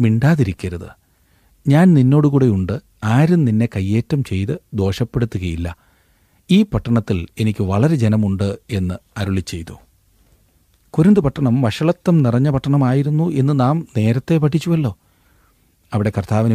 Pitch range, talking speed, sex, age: 100-135 Hz, 95 wpm, male, 40-59